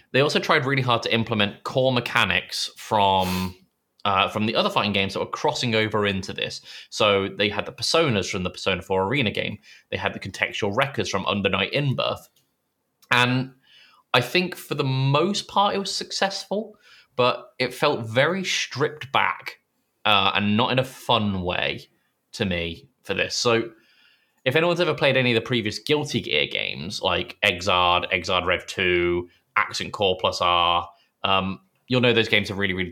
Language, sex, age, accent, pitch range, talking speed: English, male, 20-39, British, 100-135 Hz, 175 wpm